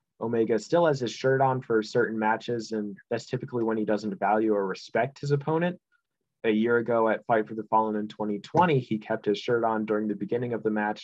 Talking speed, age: 225 wpm, 20-39